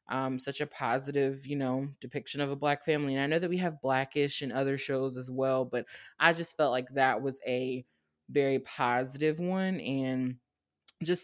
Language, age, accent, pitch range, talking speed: English, 20-39, American, 135-175 Hz, 200 wpm